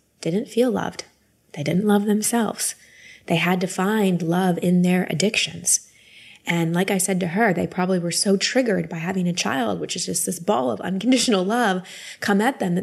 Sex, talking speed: female, 195 wpm